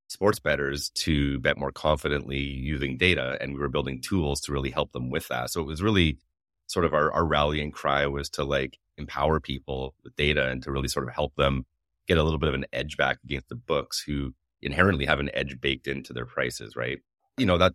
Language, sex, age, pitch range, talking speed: English, male, 30-49, 70-80 Hz, 225 wpm